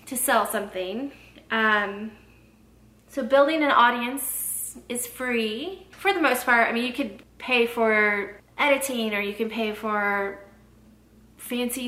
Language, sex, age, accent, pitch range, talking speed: English, female, 20-39, American, 215-260 Hz, 135 wpm